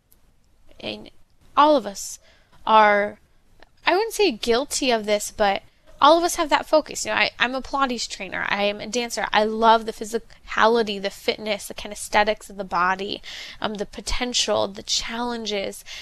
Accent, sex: American, female